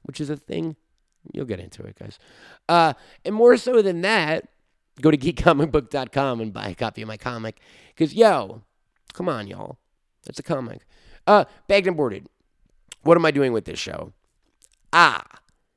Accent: American